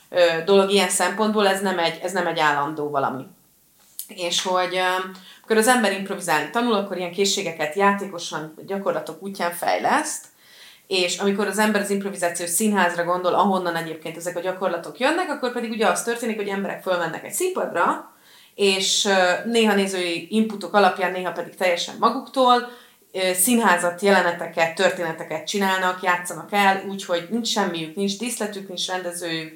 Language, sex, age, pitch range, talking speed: Hungarian, female, 30-49, 170-210 Hz, 145 wpm